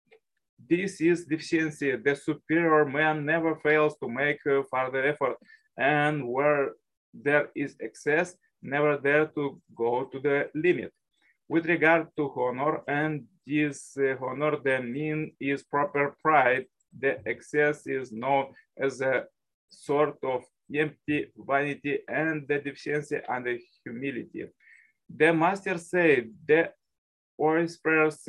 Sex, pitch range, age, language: male, 140-160 Hz, 20-39, English